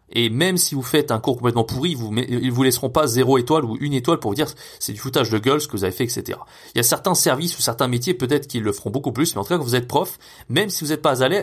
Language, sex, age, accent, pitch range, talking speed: French, male, 30-49, French, 105-150 Hz, 320 wpm